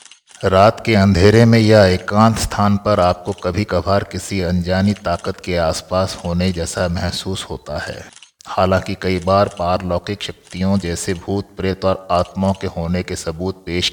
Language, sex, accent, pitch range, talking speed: Hindi, male, native, 90-100 Hz, 155 wpm